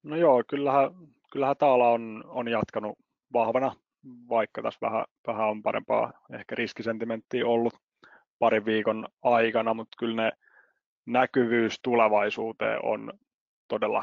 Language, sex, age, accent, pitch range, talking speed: Finnish, male, 30-49, native, 110-120 Hz, 110 wpm